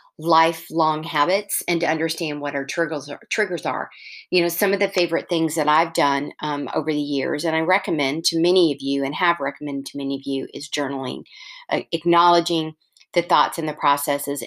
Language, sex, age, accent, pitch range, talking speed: English, female, 40-59, American, 150-180 Hz, 190 wpm